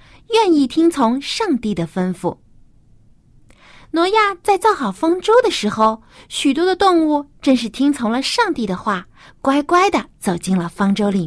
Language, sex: Chinese, female